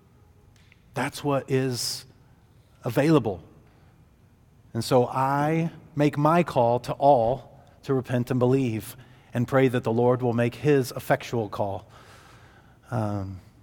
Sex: male